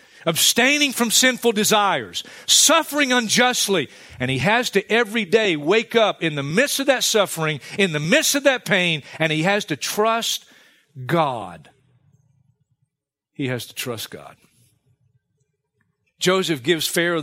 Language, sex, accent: English, male, American